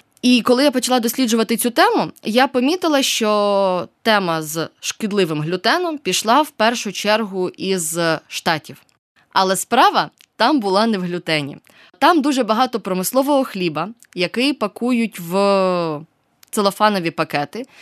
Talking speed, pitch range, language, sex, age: 125 wpm, 180-250 Hz, Ukrainian, female, 20-39